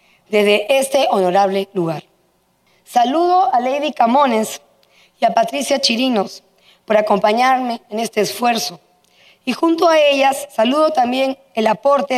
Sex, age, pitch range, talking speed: female, 40-59, 195-280 Hz, 125 wpm